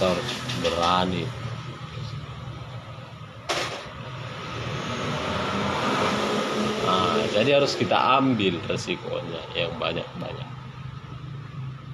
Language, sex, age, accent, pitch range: Indonesian, male, 30-49, native, 100-125 Hz